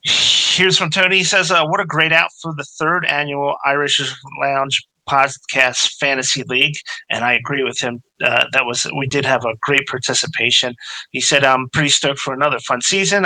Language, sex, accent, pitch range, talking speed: English, male, American, 130-160 Hz, 190 wpm